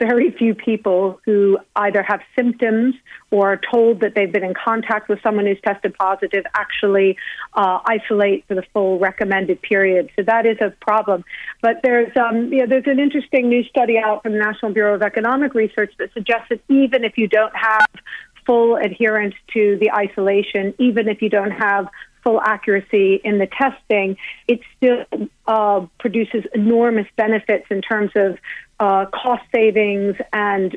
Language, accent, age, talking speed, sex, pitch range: English, American, 40-59, 170 wpm, female, 195-225 Hz